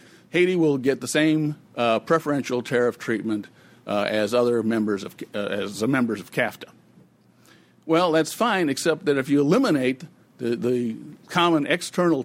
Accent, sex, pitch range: American, male, 120-155 Hz